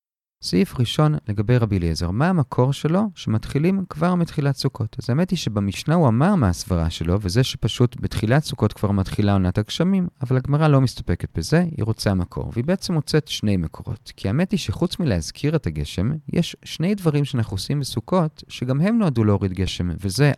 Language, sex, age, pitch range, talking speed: Hebrew, male, 40-59, 105-175 Hz, 180 wpm